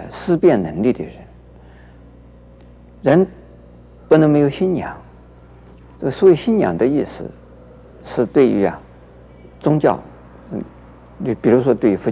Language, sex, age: Chinese, male, 50-69